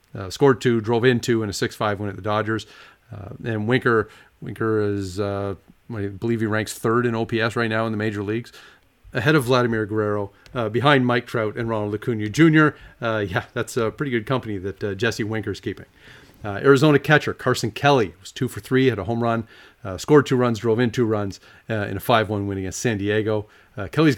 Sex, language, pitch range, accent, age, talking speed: male, English, 105-135 Hz, American, 40-59, 215 wpm